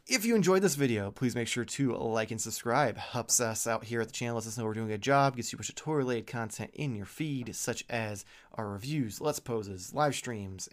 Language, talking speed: English, 270 wpm